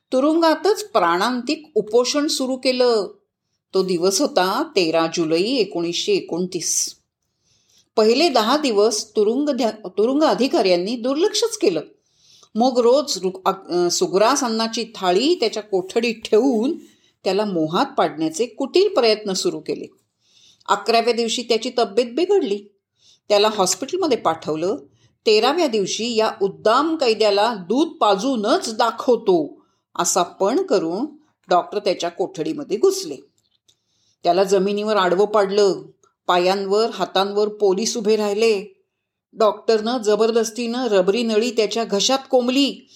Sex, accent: female, native